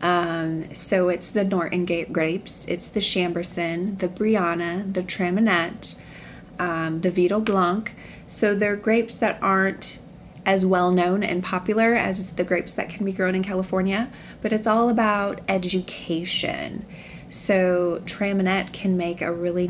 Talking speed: 145 wpm